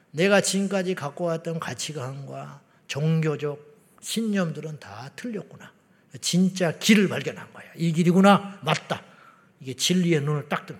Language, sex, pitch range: Korean, male, 150-195 Hz